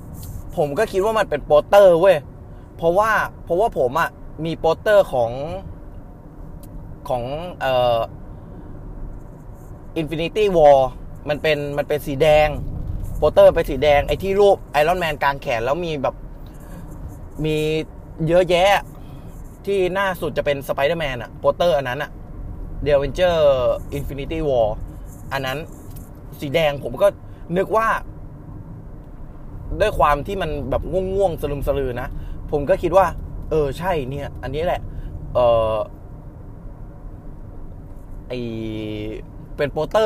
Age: 20-39